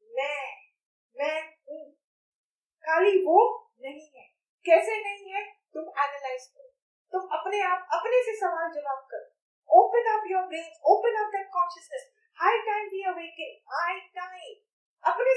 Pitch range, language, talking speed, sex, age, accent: 330-435 Hz, Hindi, 125 wpm, female, 30-49, native